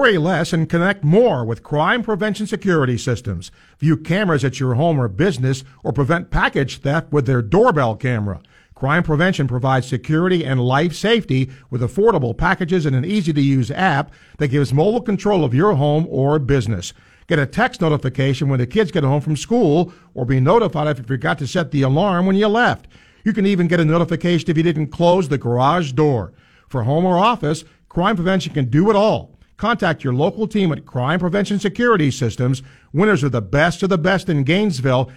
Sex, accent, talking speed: male, American, 195 wpm